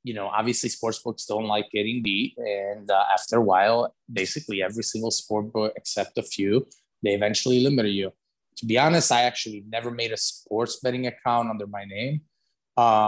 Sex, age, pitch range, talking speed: male, 20-39, 110-125 Hz, 185 wpm